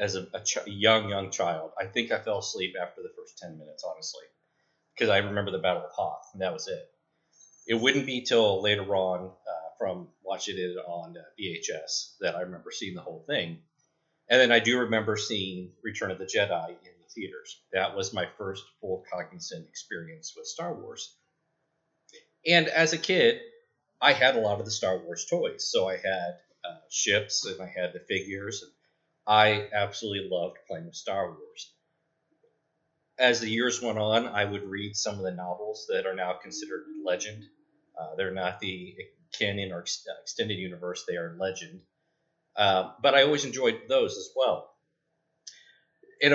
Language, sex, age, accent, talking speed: English, male, 30-49, American, 185 wpm